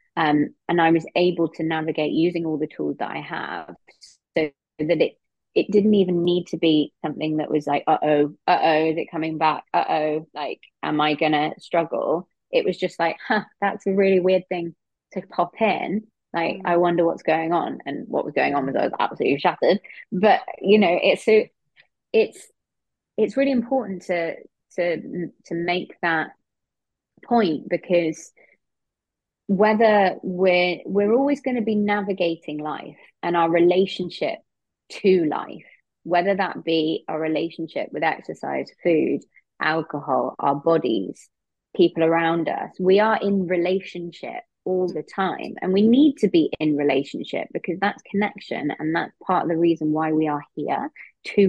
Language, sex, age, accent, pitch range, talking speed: English, female, 20-39, British, 160-200 Hz, 165 wpm